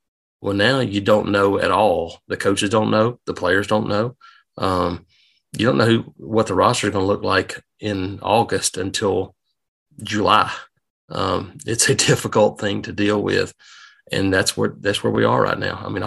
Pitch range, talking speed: 100-115 Hz, 190 wpm